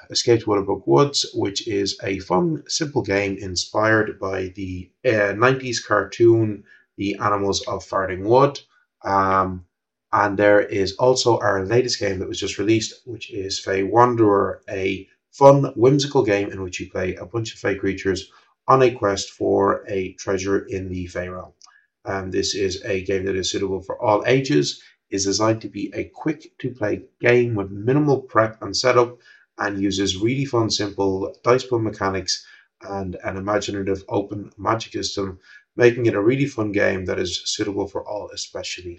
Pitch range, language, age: 95-120 Hz, English, 30-49